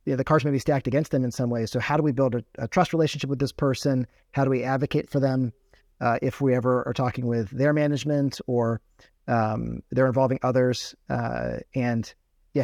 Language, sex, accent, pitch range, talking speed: English, male, American, 125-150 Hz, 215 wpm